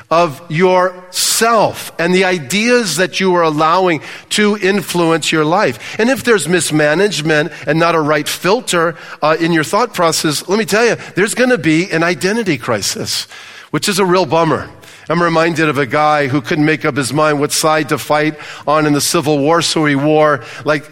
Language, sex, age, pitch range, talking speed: English, male, 50-69, 150-195 Hz, 190 wpm